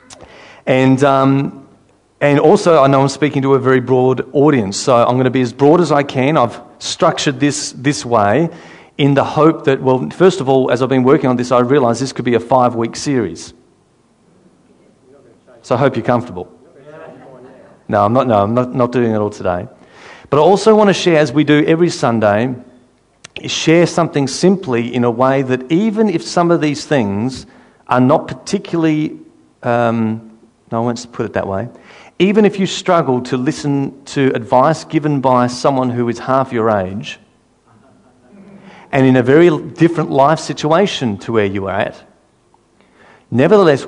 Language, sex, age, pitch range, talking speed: English, male, 40-59, 120-155 Hz, 180 wpm